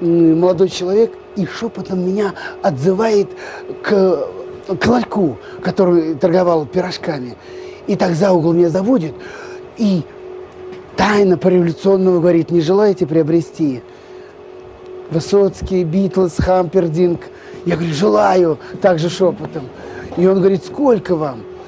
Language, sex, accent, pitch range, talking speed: Russian, male, native, 175-240 Hz, 105 wpm